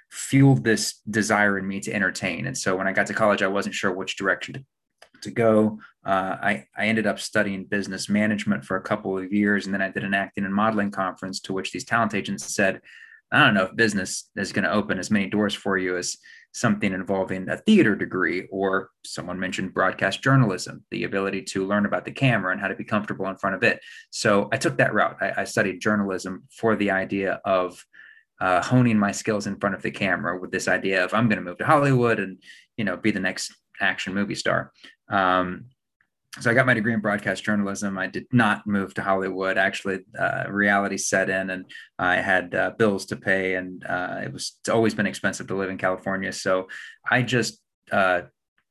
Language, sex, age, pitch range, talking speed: English, male, 20-39, 95-110 Hz, 215 wpm